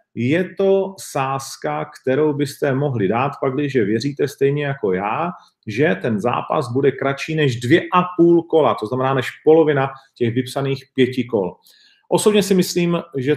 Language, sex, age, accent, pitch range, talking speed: Czech, male, 40-59, native, 125-155 Hz, 155 wpm